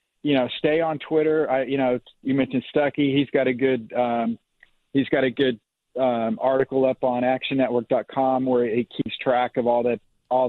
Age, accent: 40-59, American